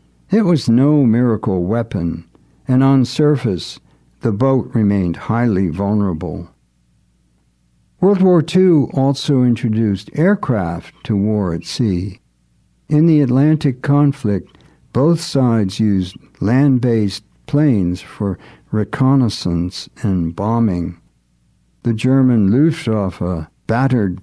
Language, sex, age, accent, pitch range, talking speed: English, male, 60-79, American, 85-120 Hz, 100 wpm